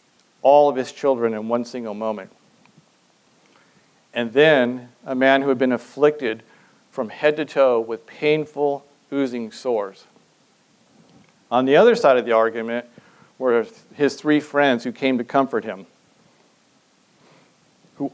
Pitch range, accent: 120-145 Hz, American